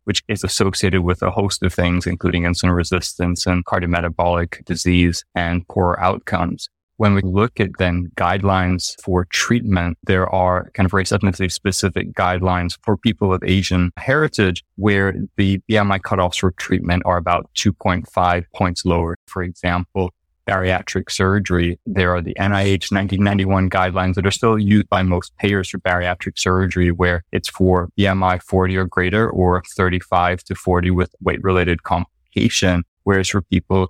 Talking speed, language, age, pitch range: 150 wpm, English, 20-39, 90-100 Hz